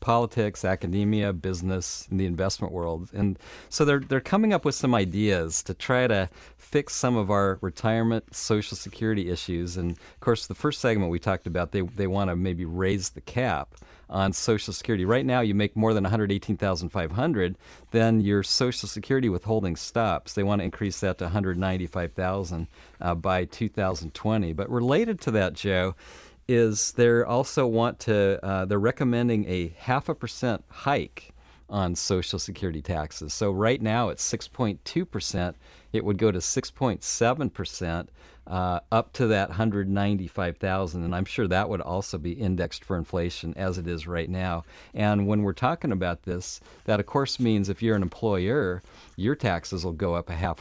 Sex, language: male, English